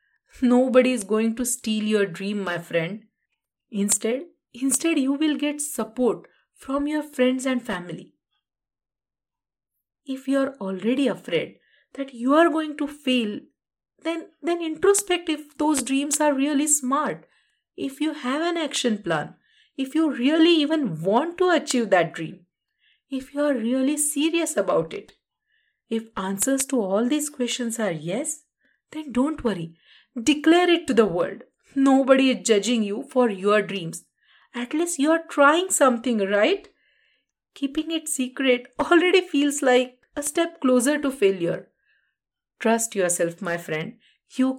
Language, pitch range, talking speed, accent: English, 220-305 Hz, 145 wpm, Indian